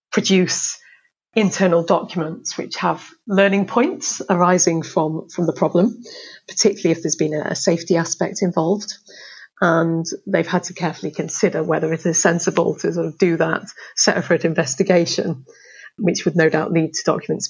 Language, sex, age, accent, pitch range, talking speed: English, female, 30-49, British, 165-200 Hz, 155 wpm